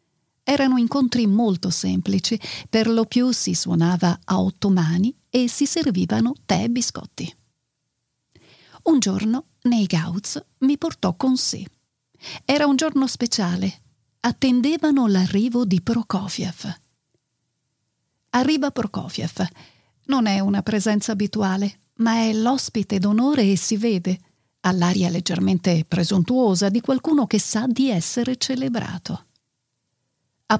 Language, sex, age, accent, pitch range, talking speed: Italian, female, 40-59, native, 185-245 Hz, 115 wpm